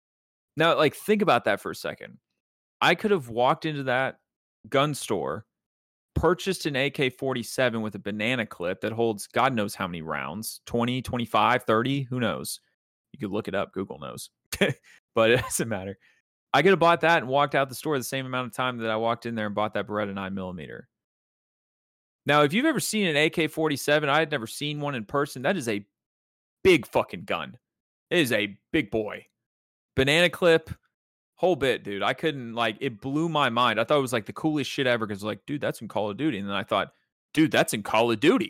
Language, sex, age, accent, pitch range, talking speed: English, male, 30-49, American, 110-155 Hz, 210 wpm